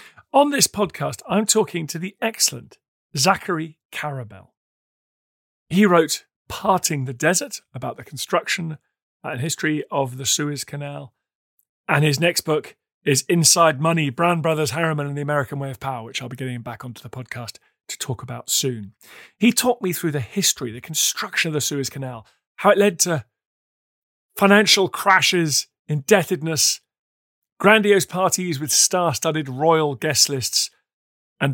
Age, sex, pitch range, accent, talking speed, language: 40-59, male, 130-175 Hz, British, 150 wpm, English